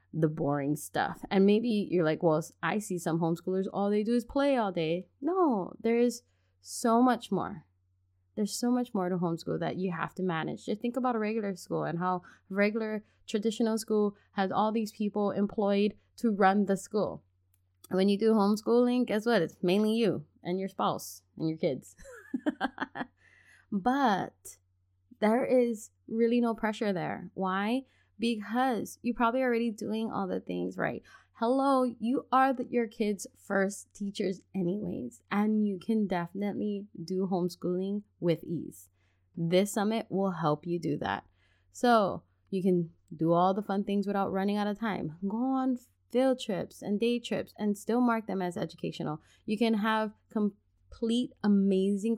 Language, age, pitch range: English, 20-39, 175-230 Hz